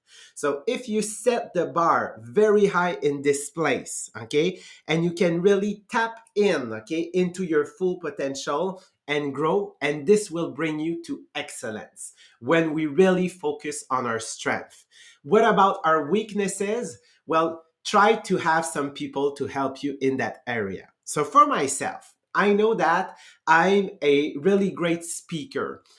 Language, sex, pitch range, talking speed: English, male, 145-200 Hz, 150 wpm